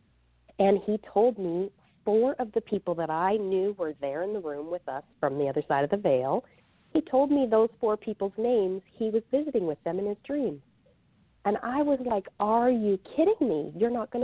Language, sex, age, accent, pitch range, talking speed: English, female, 40-59, American, 170-250 Hz, 215 wpm